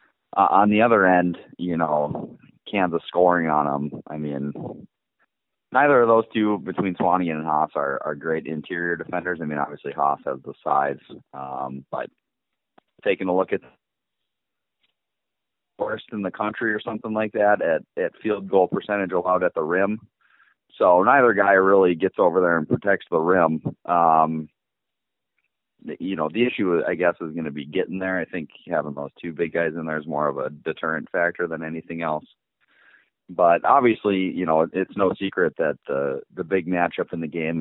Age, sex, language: 30-49, male, English